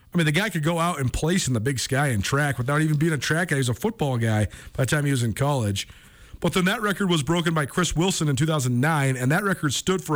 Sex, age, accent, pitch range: male, 40-59, American, 135-185 Hz